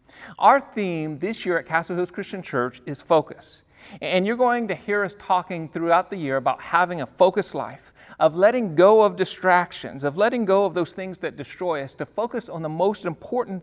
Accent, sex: American, male